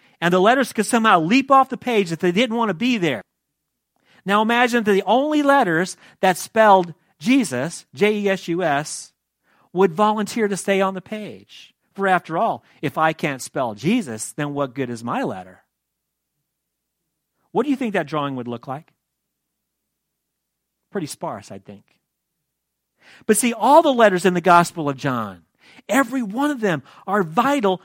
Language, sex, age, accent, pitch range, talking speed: English, male, 40-59, American, 150-225 Hz, 165 wpm